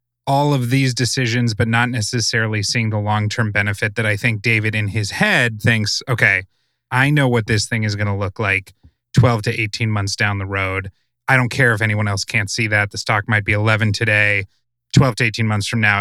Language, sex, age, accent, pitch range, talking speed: English, male, 30-49, American, 105-125 Hz, 215 wpm